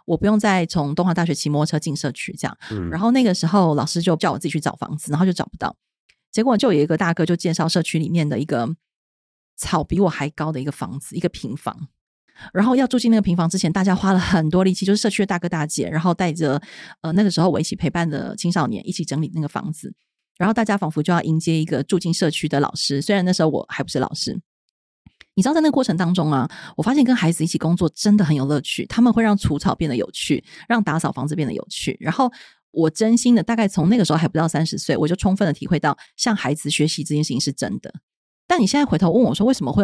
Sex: female